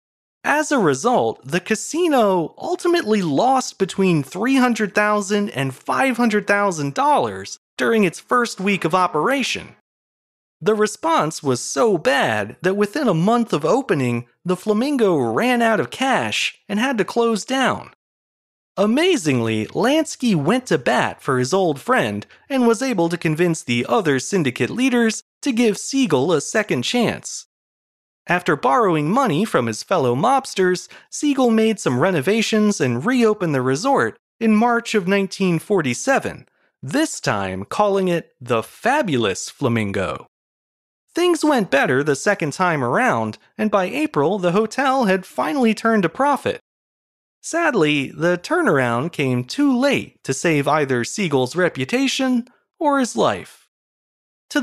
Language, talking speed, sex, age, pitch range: English, 135 wpm, male, 30-49, 155-245 Hz